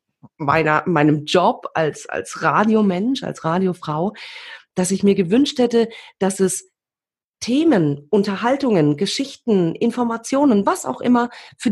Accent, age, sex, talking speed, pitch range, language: German, 40-59, female, 120 wpm, 160-215 Hz, German